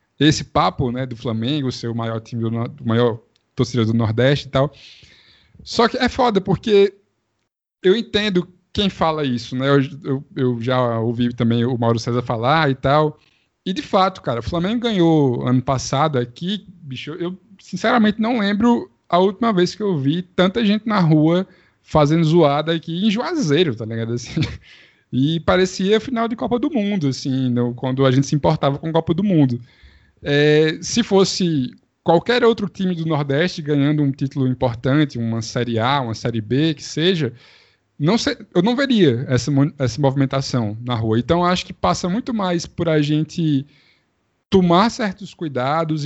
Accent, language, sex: Brazilian, Portuguese, male